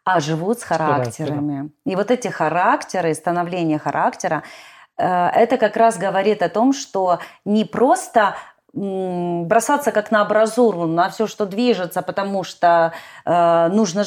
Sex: female